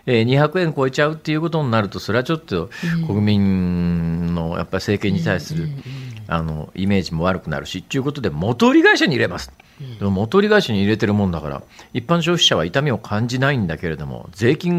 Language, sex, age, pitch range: Japanese, male, 50-69, 100-160 Hz